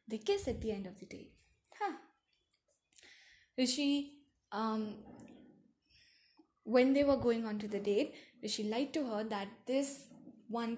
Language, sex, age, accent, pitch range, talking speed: English, female, 10-29, Indian, 205-265 Hz, 145 wpm